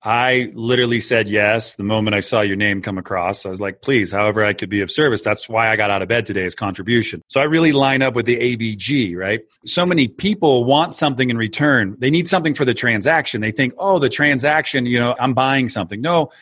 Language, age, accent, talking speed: English, 40-59, American, 240 wpm